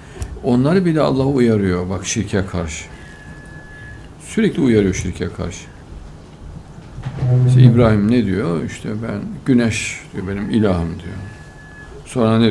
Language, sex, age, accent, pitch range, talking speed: Turkish, male, 60-79, native, 90-120 Hz, 115 wpm